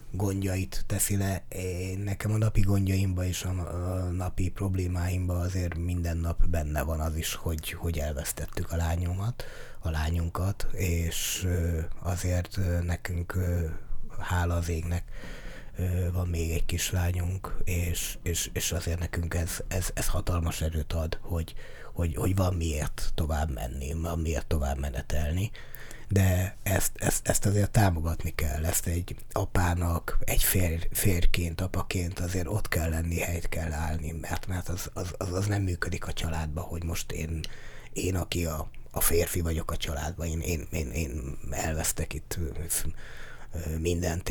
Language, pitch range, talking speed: Hungarian, 80-95 Hz, 145 wpm